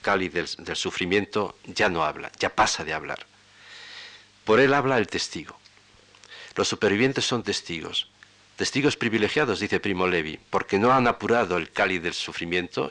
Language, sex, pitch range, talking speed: Spanish, male, 100-120 Hz, 155 wpm